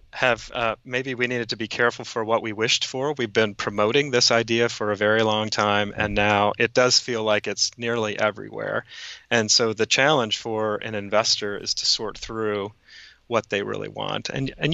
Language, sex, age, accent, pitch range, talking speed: English, male, 30-49, American, 105-125 Hz, 200 wpm